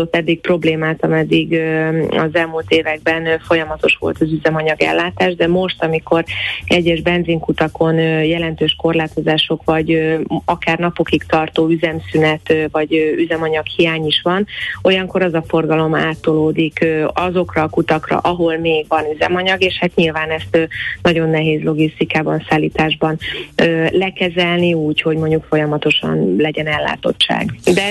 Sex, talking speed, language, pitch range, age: female, 120 wpm, Hungarian, 160-175 Hz, 30-49